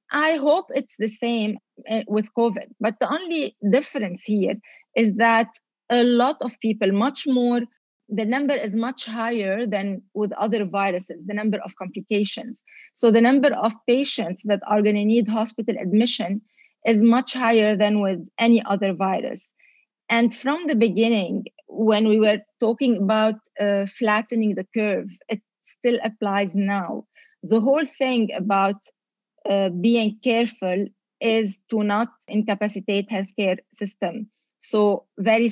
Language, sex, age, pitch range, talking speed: English, female, 30-49, 200-235 Hz, 145 wpm